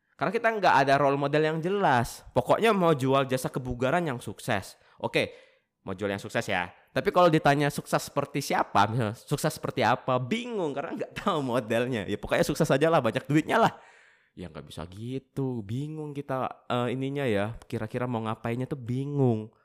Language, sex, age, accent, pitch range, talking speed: Indonesian, male, 20-39, native, 95-140 Hz, 175 wpm